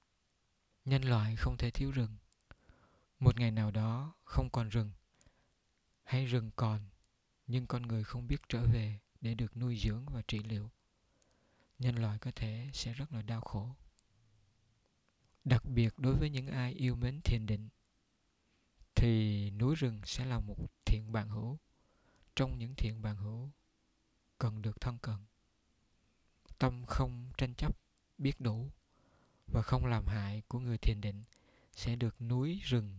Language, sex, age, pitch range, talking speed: Vietnamese, male, 20-39, 105-125 Hz, 155 wpm